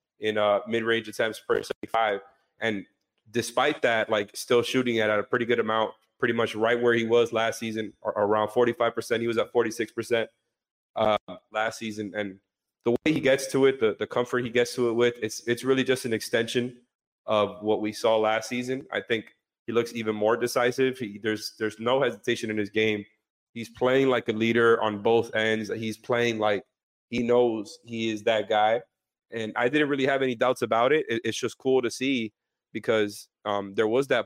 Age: 30-49